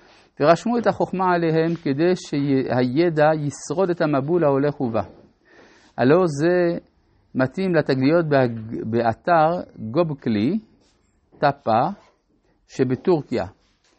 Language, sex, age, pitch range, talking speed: Hebrew, male, 50-69, 125-185 Hz, 80 wpm